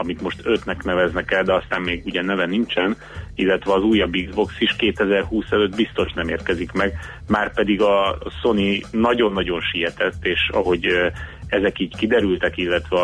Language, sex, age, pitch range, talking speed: Hungarian, male, 30-49, 85-105 Hz, 155 wpm